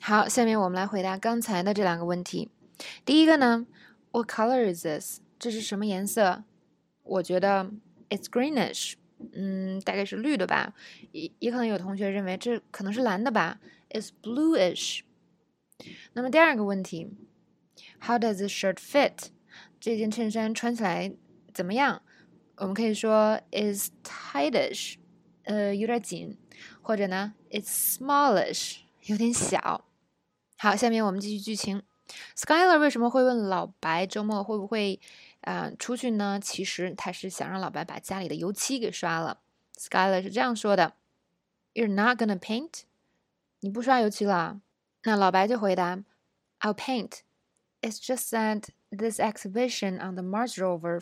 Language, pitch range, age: Chinese, 190-235 Hz, 20-39